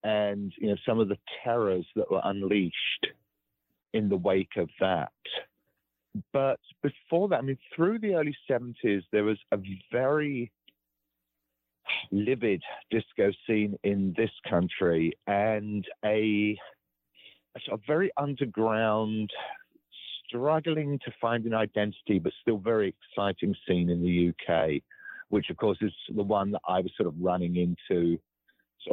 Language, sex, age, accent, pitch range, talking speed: English, male, 40-59, British, 85-120 Hz, 135 wpm